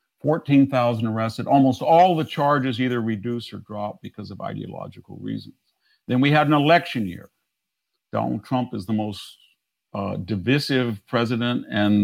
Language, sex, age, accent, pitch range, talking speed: English, male, 50-69, American, 110-130 Hz, 145 wpm